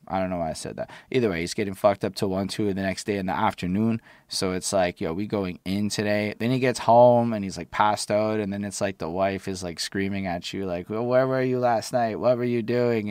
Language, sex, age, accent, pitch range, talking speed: English, male, 20-39, American, 95-105 Hz, 285 wpm